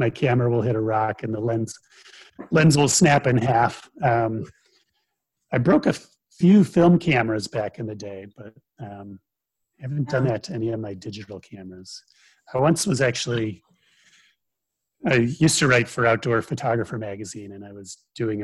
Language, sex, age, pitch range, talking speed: English, male, 30-49, 110-140 Hz, 175 wpm